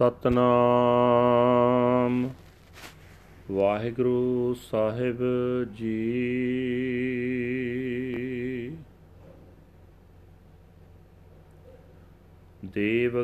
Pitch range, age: 115-145 Hz, 40-59